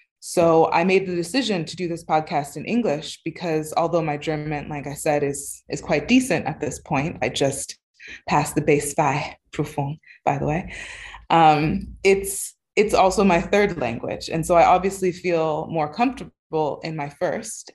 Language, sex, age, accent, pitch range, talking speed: German, female, 20-39, American, 150-190 Hz, 170 wpm